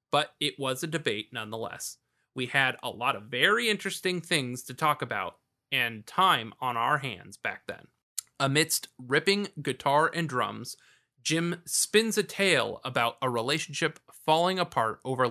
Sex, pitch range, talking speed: male, 120-165 Hz, 155 wpm